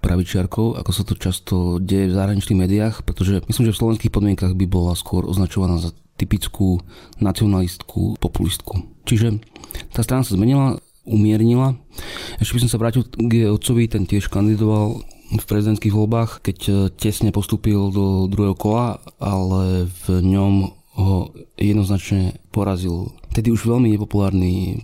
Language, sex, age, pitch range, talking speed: Slovak, male, 30-49, 95-110 Hz, 145 wpm